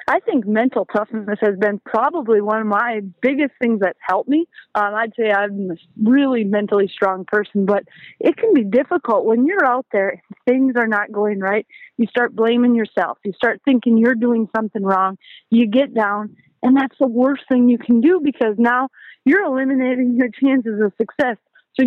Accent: American